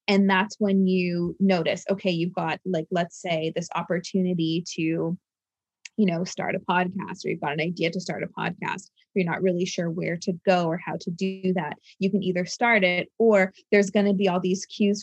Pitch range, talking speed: 175-195 Hz, 215 wpm